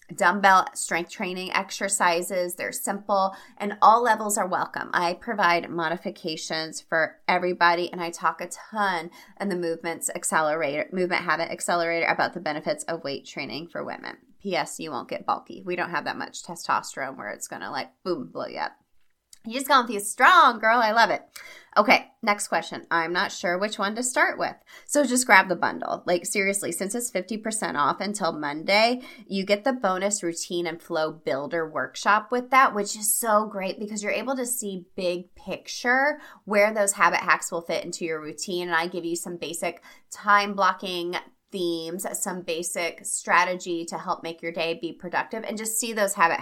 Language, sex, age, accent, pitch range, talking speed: English, female, 20-39, American, 170-210 Hz, 185 wpm